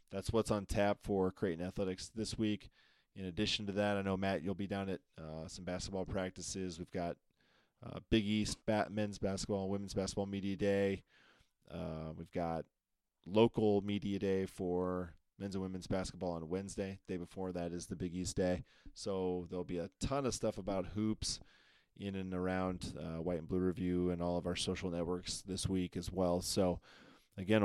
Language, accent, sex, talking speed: English, American, male, 185 wpm